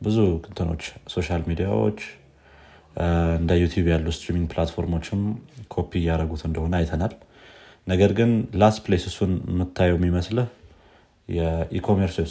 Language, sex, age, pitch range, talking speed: Amharic, male, 30-49, 85-95 Hz, 100 wpm